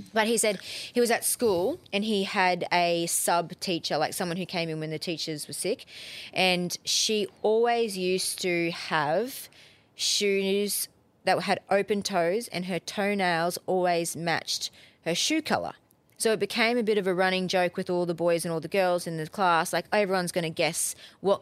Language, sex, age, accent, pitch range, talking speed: English, female, 20-39, Australian, 165-195 Hz, 190 wpm